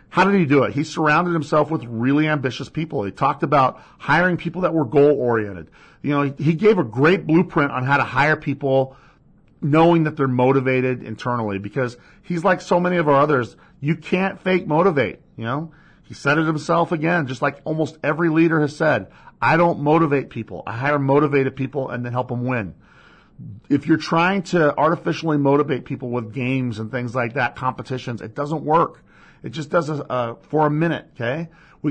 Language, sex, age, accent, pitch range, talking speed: English, male, 40-59, American, 130-165 Hz, 195 wpm